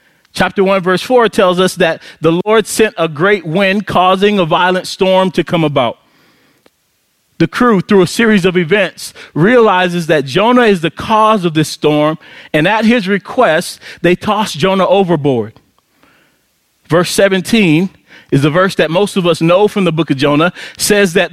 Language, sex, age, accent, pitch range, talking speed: English, male, 30-49, American, 155-200 Hz, 170 wpm